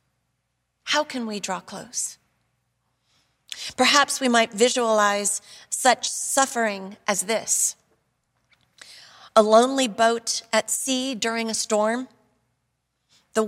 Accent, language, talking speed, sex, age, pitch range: American, English, 100 wpm, female, 40-59, 215-260 Hz